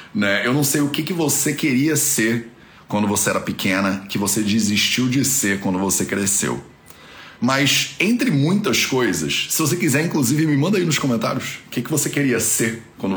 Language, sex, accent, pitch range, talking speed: Portuguese, male, Brazilian, 105-155 Hz, 190 wpm